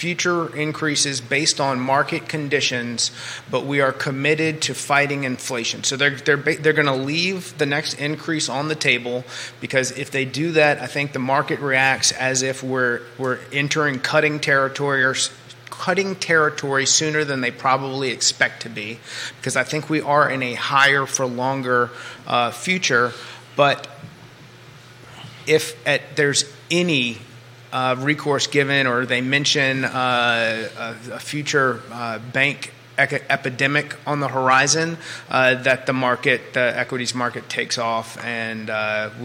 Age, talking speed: 30-49, 150 wpm